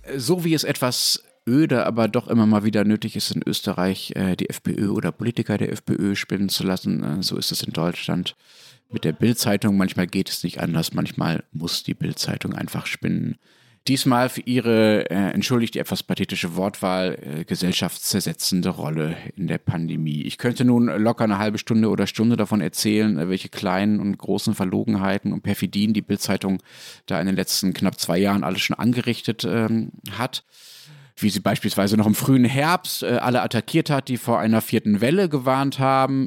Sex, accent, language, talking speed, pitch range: male, German, German, 180 wpm, 100-120 Hz